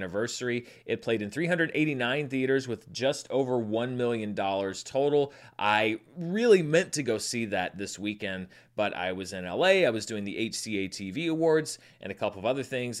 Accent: American